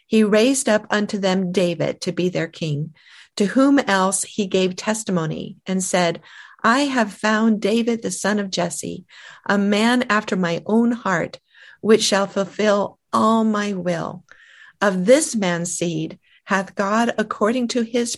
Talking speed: 155 wpm